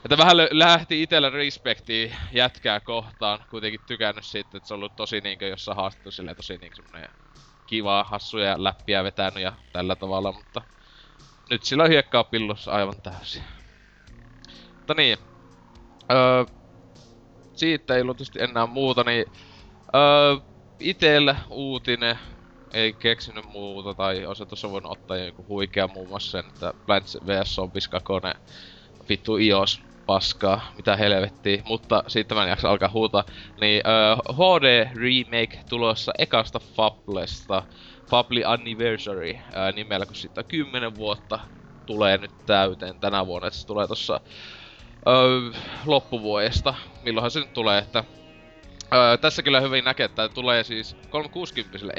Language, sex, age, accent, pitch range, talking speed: Finnish, male, 20-39, native, 100-125 Hz, 135 wpm